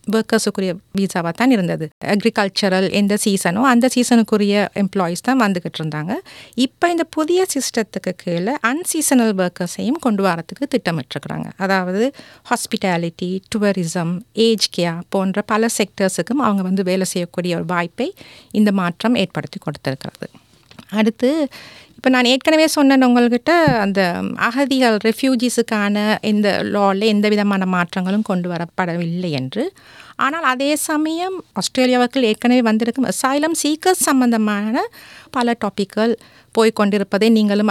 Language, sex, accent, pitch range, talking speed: Tamil, female, native, 190-245 Hz, 110 wpm